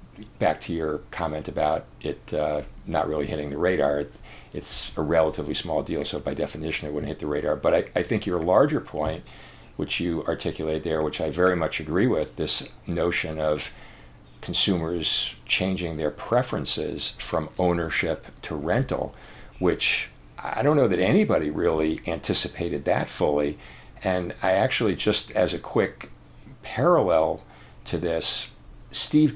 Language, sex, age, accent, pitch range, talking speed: English, male, 50-69, American, 80-105 Hz, 150 wpm